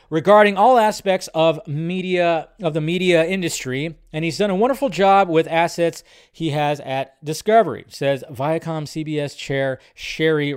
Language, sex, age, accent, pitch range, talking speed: English, male, 30-49, American, 155-215 Hz, 150 wpm